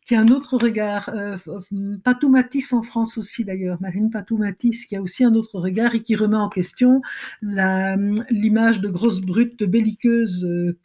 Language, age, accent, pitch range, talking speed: French, 50-69, French, 190-240 Hz, 165 wpm